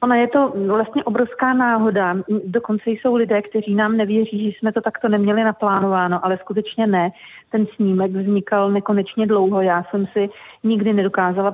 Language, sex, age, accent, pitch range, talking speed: Czech, female, 40-59, native, 190-220 Hz, 160 wpm